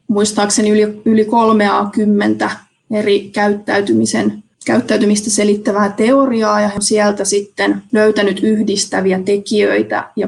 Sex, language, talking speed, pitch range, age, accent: female, Finnish, 105 wpm, 200-230 Hz, 20-39, native